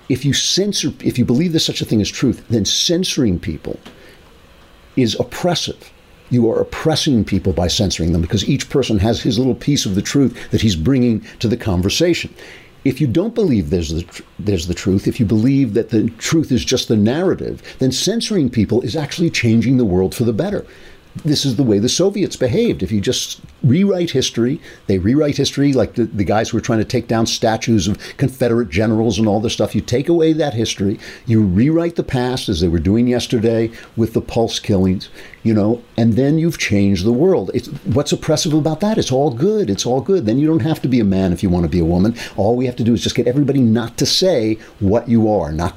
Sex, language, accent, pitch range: male, English, American, 105-140 Hz